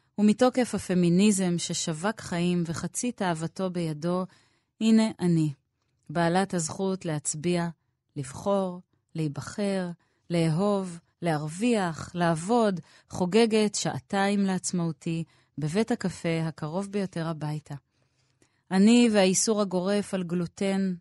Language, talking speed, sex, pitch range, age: Hebrew, 85 wpm, female, 165-200 Hz, 30-49